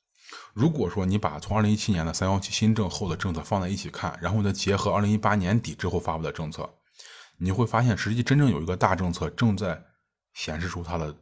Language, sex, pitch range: Chinese, male, 85-110 Hz